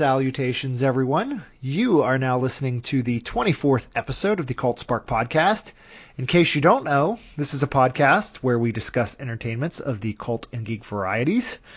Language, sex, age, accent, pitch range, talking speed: English, male, 30-49, American, 125-155 Hz, 175 wpm